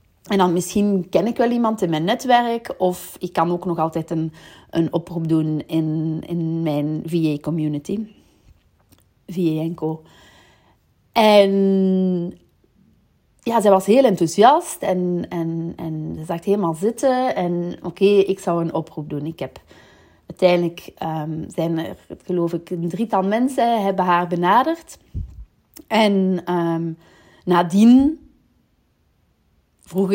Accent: Dutch